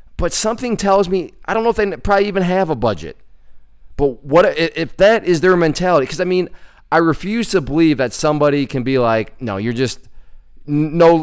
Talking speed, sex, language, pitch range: 200 wpm, male, English, 130-180 Hz